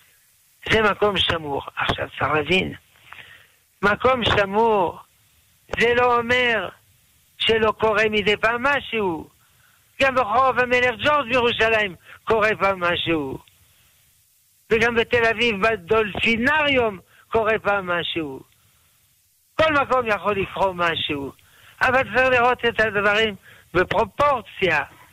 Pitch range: 180-245 Hz